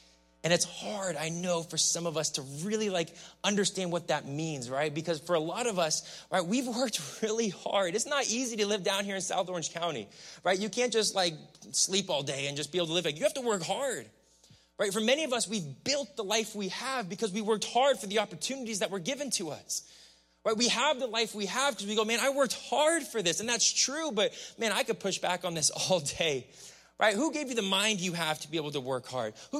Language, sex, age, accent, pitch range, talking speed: English, male, 20-39, American, 185-265 Hz, 255 wpm